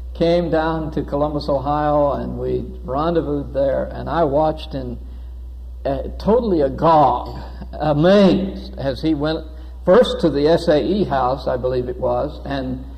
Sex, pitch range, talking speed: male, 125-175 Hz, 140 wpm